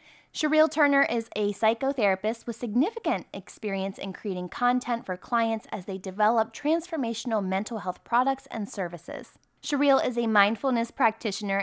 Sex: female